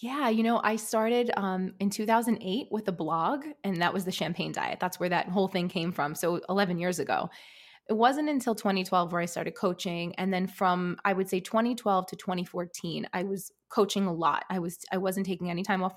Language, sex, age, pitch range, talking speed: English, female, 20-39, 180-215 Hz, 220 wpm